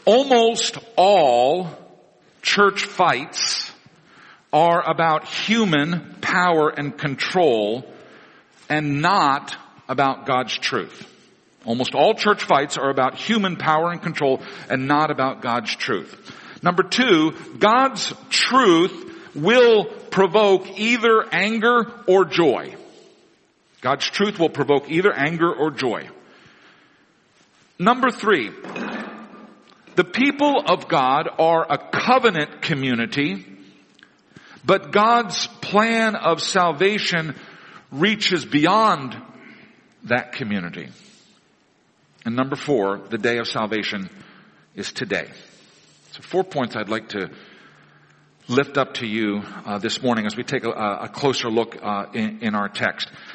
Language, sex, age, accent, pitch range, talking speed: English, male, 50-69, American, 130-210 Hz, 115 wpm